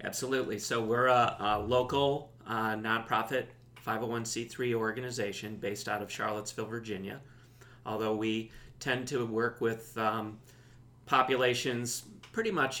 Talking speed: 115 wpm